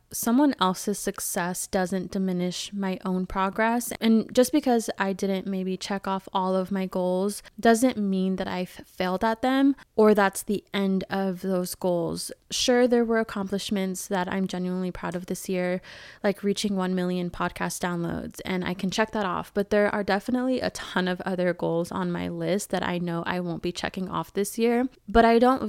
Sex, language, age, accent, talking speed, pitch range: female, English, 20-39, American, 190 wpm, 180-210 Hz